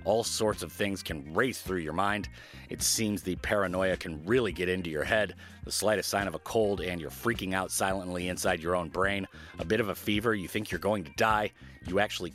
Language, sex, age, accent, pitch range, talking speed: English, male, 30-49, American, 90-110 Hz, 230 wpm